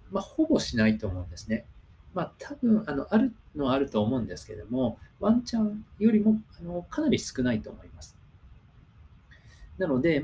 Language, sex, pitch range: Japanese, male, 100-160 Hz